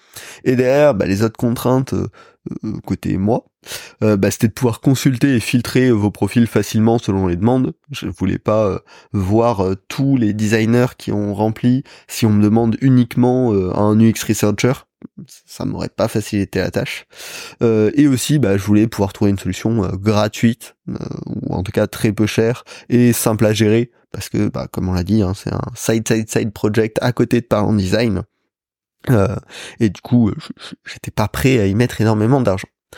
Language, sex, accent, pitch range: French, male, French, 105-125 Hz